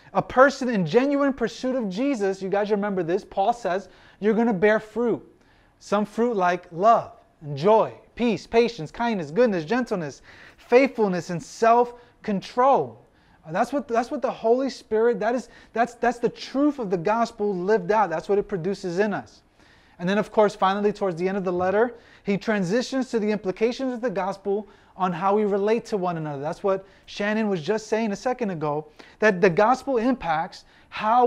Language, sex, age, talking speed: English, male, 30-49, 180 wpm